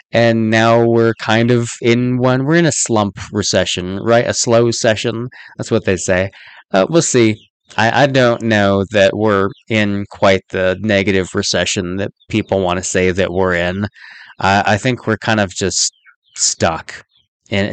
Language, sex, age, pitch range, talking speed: English, male, 20-39, 95-115 Hz, 175 wpm